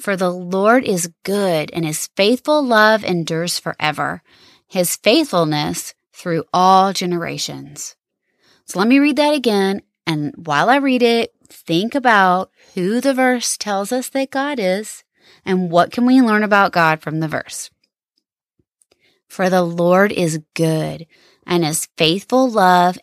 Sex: female